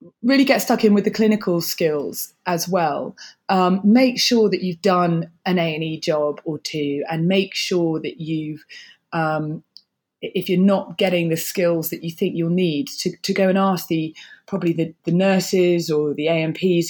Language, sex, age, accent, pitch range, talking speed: English, female, 20-39, British, 160-190 Hz, 180 wpm